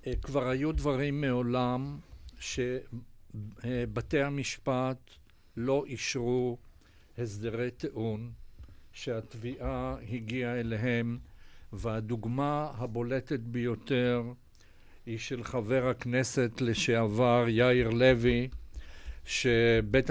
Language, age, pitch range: Hebrew, 60-79, 115-140 Hz